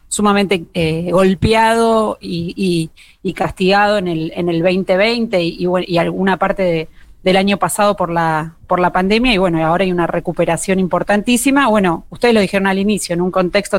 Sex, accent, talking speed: female, Argentinian, 160 wpm